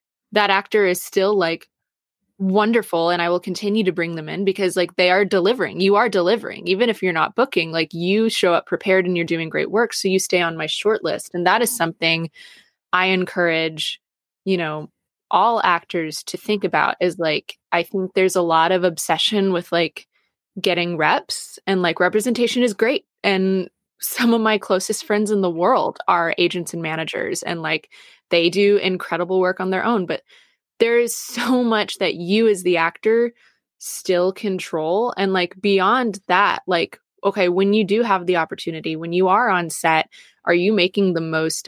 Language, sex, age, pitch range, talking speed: English, female, 20-39, 170-205 Hz, 190 wpm